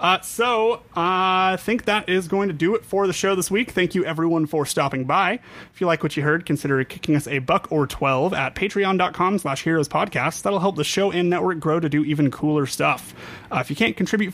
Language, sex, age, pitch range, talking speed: English, male, 30-49, 150-195 Hz, 235 wpm